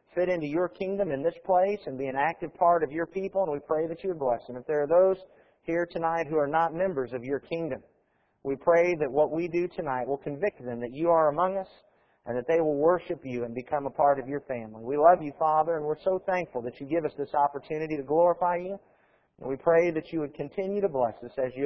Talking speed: 260 wpm